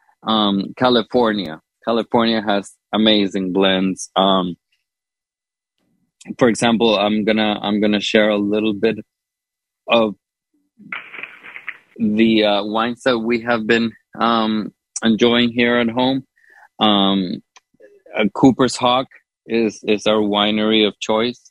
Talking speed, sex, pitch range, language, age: 115 wpm, male, 100-115 Hz, English, 20-39